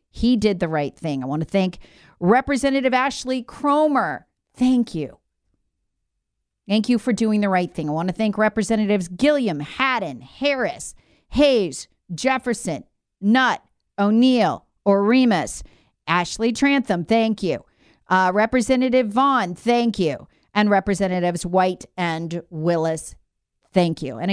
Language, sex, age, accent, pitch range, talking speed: English, female, 40-59, American, 170-255 Hz, 125 wpm